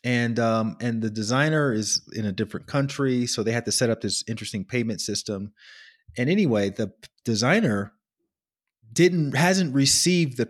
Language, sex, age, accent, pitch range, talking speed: English, male, 30-49, American, 105-135 Hz, 160 wpm